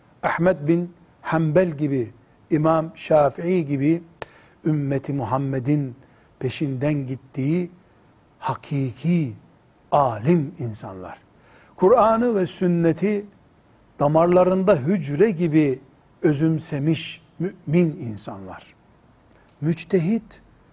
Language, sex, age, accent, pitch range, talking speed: Turkish, male, 60-79, native, 135-190 Hz, 70 wpm